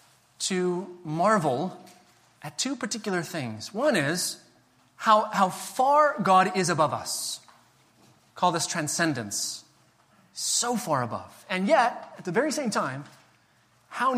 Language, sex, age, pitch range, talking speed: English, male, 30-49, 130-185 Hz, 125 wpm